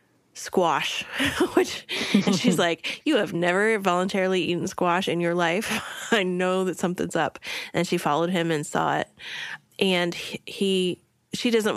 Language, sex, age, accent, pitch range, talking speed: English, female, 20-39, American, 170-190 Hz, 150 wpm